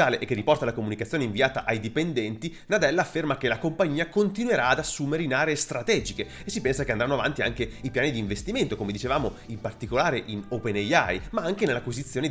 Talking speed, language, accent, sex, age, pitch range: 190 wpm, Italian, native, male, 30-49, 120-175 Hz